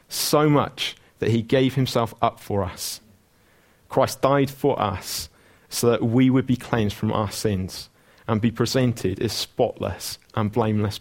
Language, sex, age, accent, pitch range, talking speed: English, male, 30-49, British, 110-130 Hz, 160 wpm